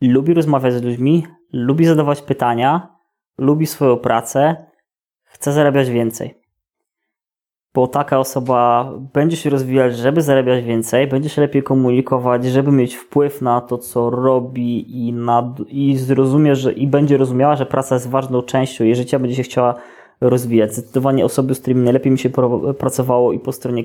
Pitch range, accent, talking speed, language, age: 125-145 Hz, native, 160 wpm, Polish, 20-39